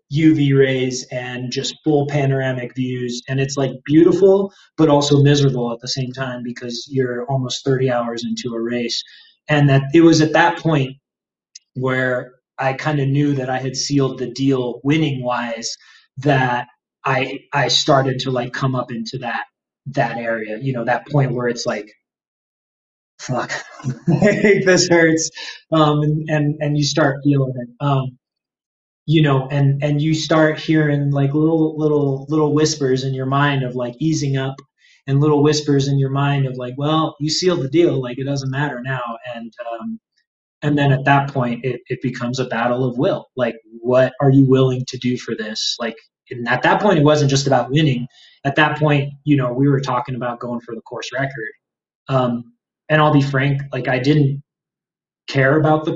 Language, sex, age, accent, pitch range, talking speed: English, male, 20-39, American, 125-150 Hz, 185 wpm